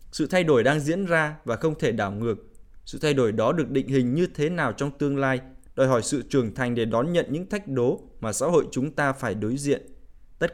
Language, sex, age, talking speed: Vietnamese, male, 20-39, 250 wpm